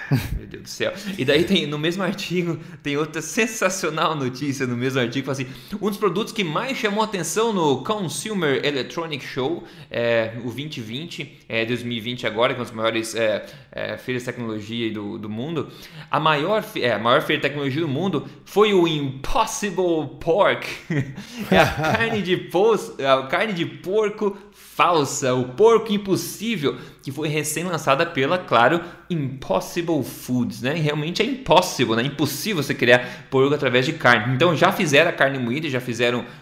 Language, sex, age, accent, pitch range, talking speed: Portuguese, male, 20-39, Brazilian, 130-185 Hz, 170 wpm